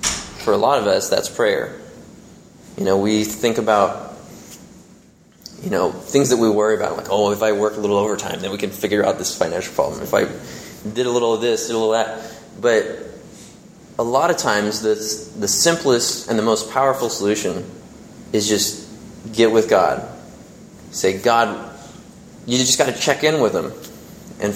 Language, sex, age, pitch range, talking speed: English, male, 20-39, 105-125 Hz, 185 wpm